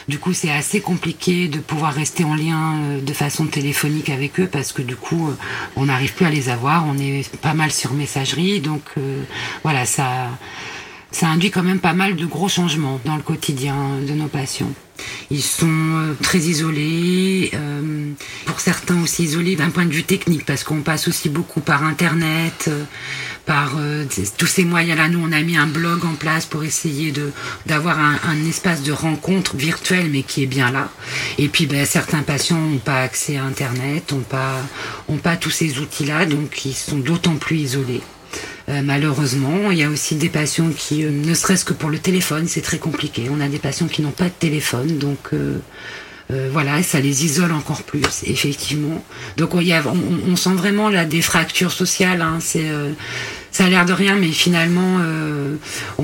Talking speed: 195 wpm